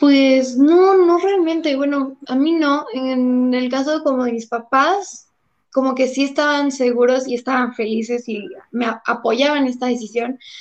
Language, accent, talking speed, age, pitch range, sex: Spanish, Mexican, 165 wpm, 10-29, 240-275 Hz, female